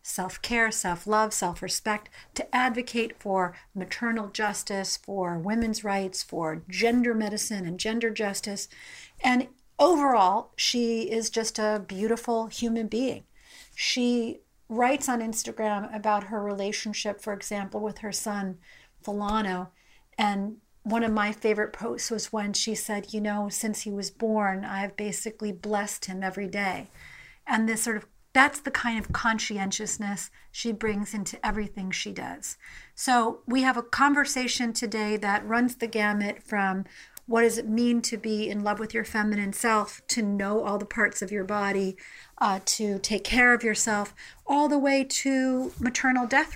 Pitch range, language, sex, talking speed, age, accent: 205-240 Hz, English, female, 155 wpm, 50-69, American